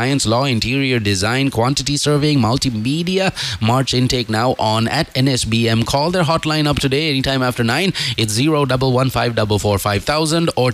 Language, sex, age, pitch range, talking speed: English, male, 30-49, 105-130 Hz, 175 wpm